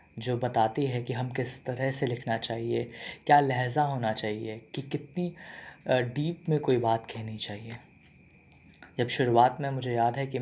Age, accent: 20-39, native